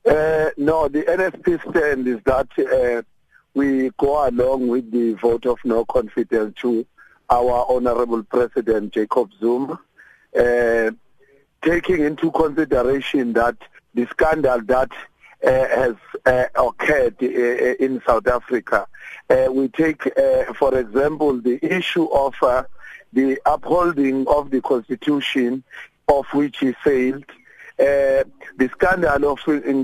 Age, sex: 50-69, male